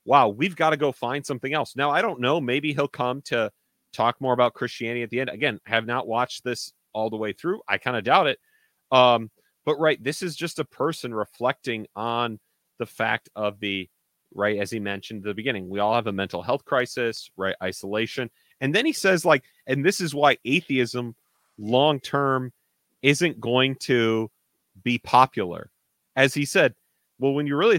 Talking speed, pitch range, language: 195 wpm, 110-145 Hz, English